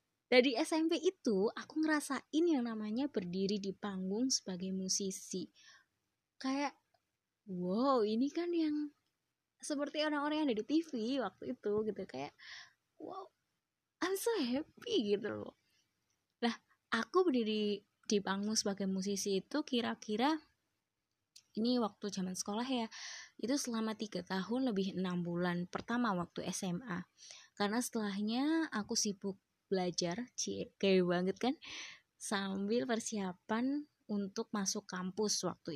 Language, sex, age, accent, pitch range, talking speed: Indonesian, female, 20-39, native, 205-280 Hz, 120 wpm